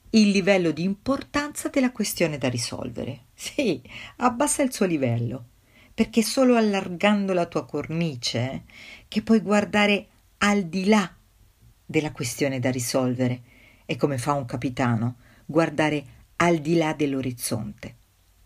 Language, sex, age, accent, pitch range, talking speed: Italian, female, 50-69, native, 125-205 Hz, 130 wpm